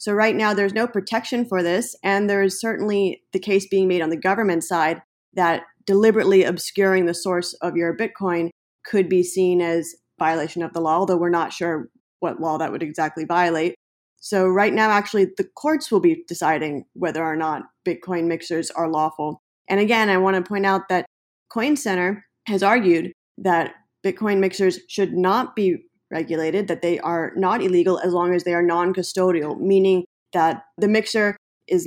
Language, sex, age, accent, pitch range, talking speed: English, female, 30-49, American, 170-200 Hz, 185 wpm